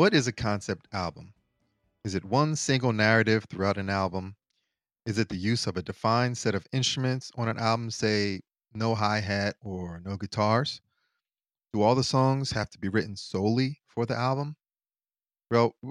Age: 30-49